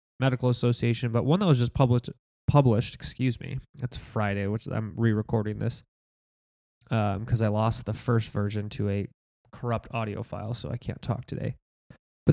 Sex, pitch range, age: male, 110-135 Hz, 20-39